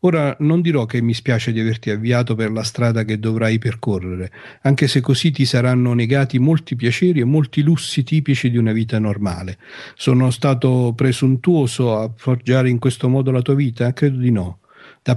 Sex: male